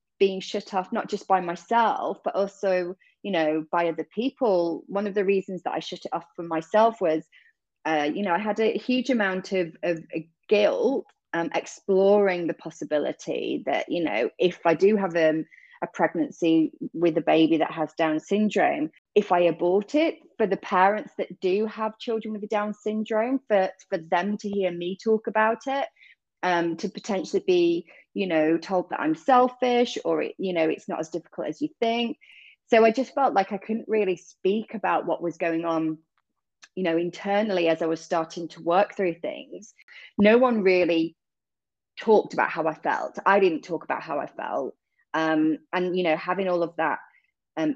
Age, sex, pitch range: 30-49, female, 165-220 Hz